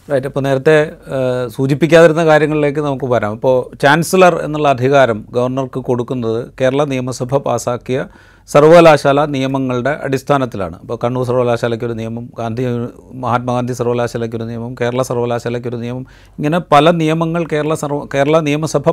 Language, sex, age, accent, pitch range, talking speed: Malayalam, male, 40-59, native, 125-160 Hz, 115 wpm